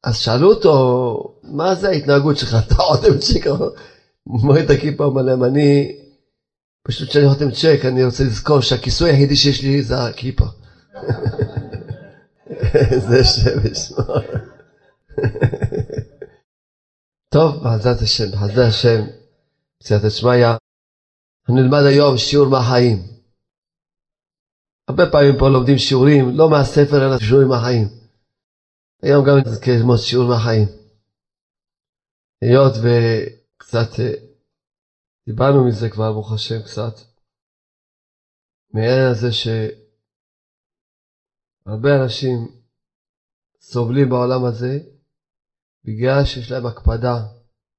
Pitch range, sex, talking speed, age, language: 110-140 Hz, male, 100 wpm, 40-59, Hebrew